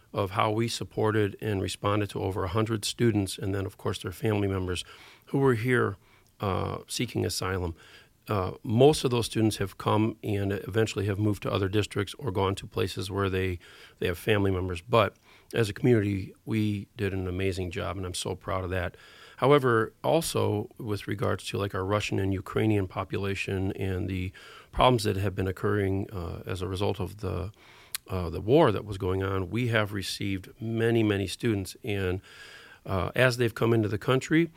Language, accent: English, American